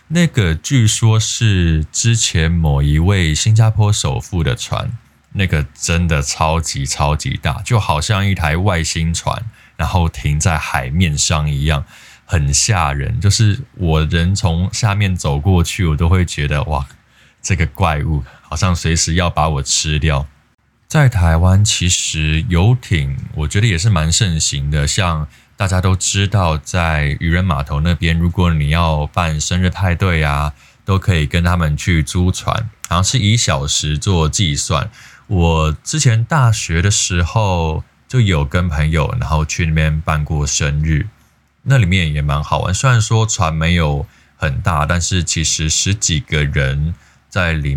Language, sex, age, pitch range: Chinese, male, 20-39, 75-100 Hz